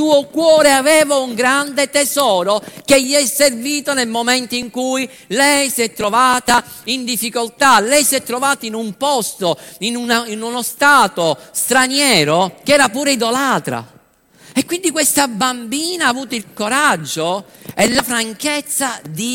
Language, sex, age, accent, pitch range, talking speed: Italian, male, 50-69, native, 175-265 Hz, 150 wpm